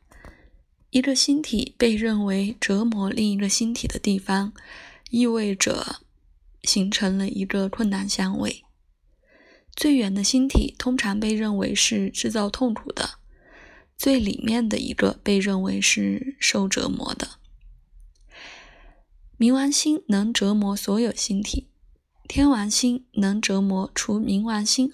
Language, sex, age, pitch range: Chinese, female, 20-39, 195-240 Hz